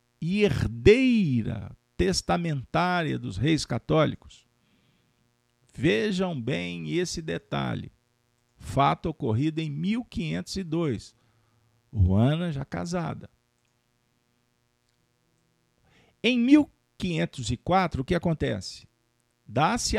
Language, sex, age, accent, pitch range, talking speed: Portuguese, male, 50-69, Brazilian, 110-155 Hz, 70 wpm